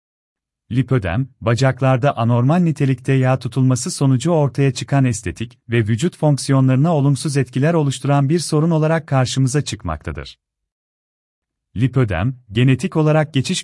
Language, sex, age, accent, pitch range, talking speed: Turkish, male, 40-59, native, 115-140 Hz, 110 wpm